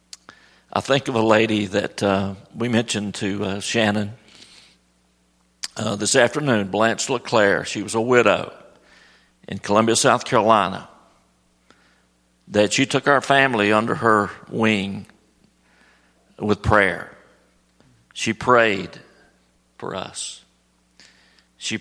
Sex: male